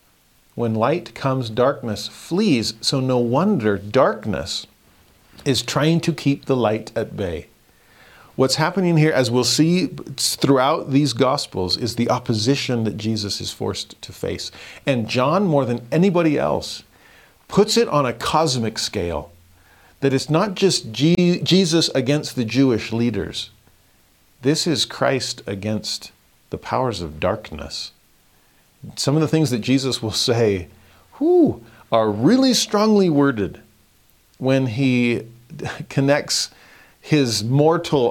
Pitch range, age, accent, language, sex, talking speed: 105-150 Hz, 40-59, American, English, male, 130 wpm